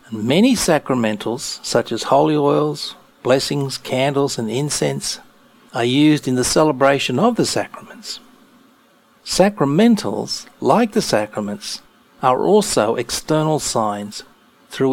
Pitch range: 115-150 Hz